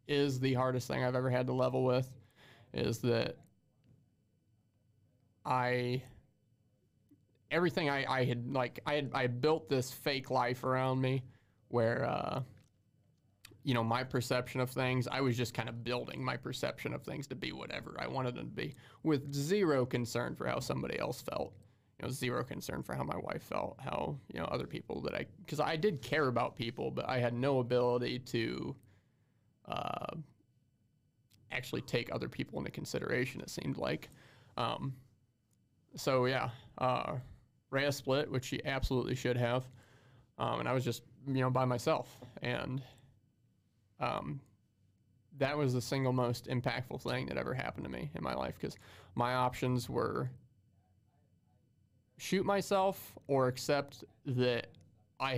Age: 30-49